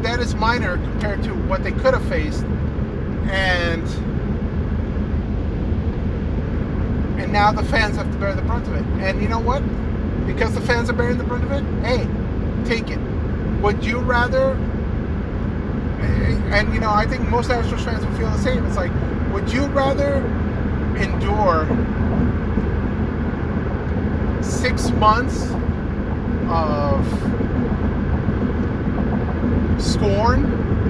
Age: 30-49